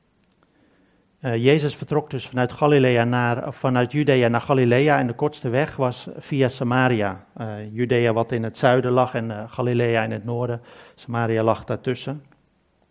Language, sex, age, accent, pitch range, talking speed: Dutch, male, 50-69, Dutch, 115-130 Hz, 150 wpm